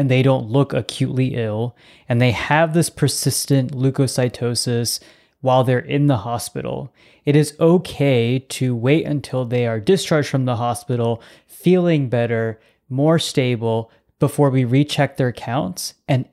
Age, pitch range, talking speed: 20-39, 120-140 Hz, 145 wpm